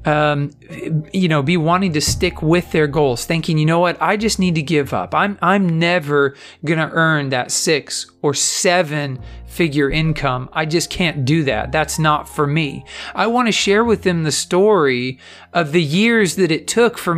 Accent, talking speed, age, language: American, 190 wpm, 40-59, English